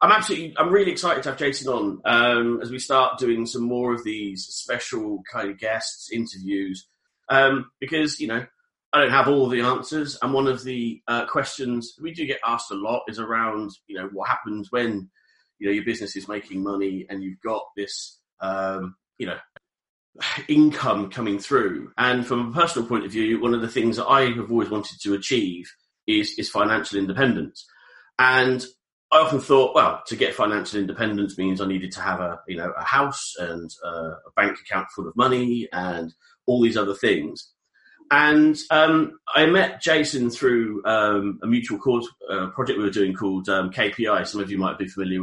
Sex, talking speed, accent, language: male, 195 wpm, British, English